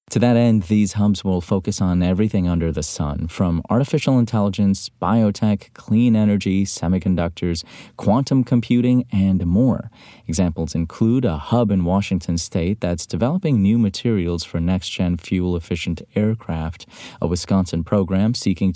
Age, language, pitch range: 30-49, English, 85-120 Hz